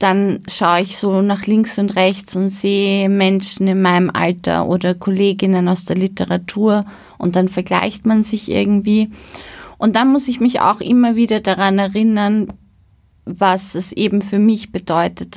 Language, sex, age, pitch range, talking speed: German, female, 20-39, 185-210 Hz, 160 wpm